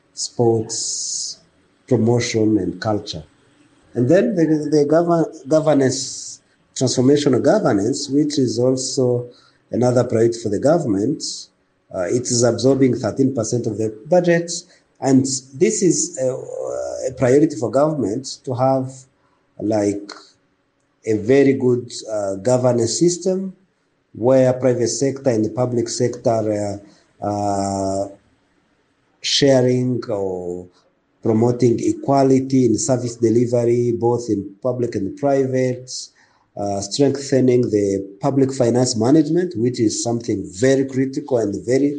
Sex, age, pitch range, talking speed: male, 50-69, 110-135 Hz, 115 wpm